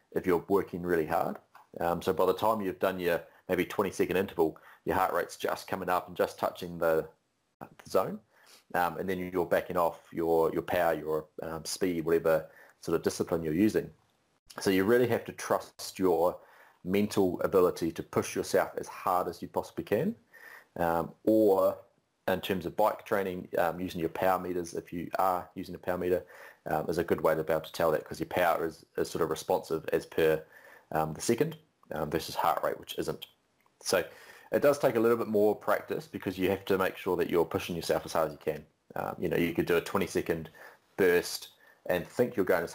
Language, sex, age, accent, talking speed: English, male, 30-49, Australian, 215 wpm